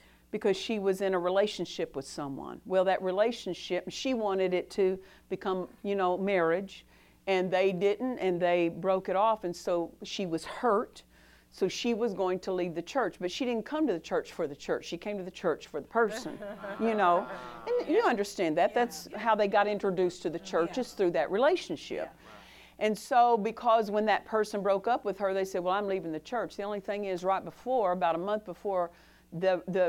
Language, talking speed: English, 210 wpm